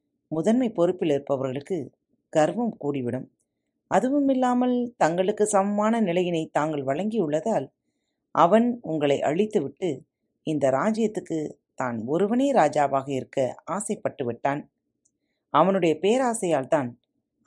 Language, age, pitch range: Tamil, 40-59, 140-215 Hz